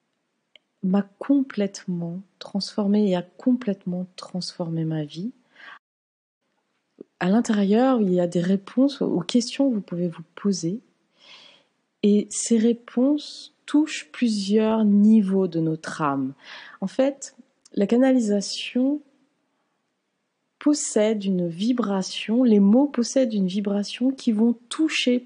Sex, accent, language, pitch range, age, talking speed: female, French, French, 190-250 Hz, 30-49, 110 wpm